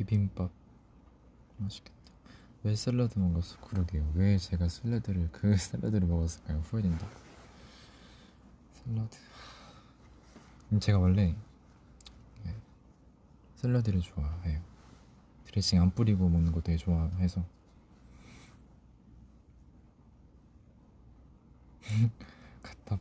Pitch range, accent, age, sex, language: 85-110 Hz, native, 20-39, male, Korean